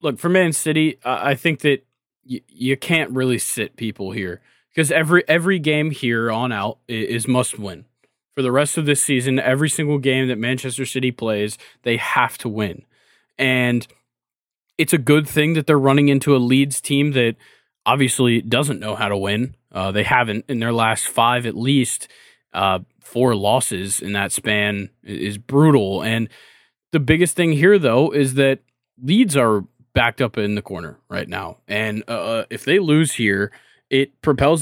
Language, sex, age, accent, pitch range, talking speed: English, male, 20-39, American, 115-140 Hz, 180 wpm